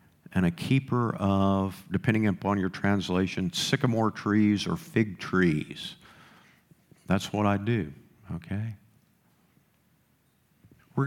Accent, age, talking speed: American, 50-69, 105 wpm